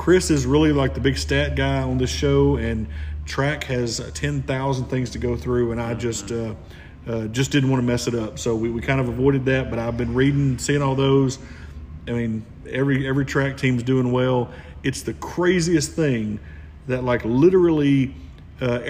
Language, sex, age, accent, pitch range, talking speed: English, male, 40-59, American, 115-135 Hz, 195 wpm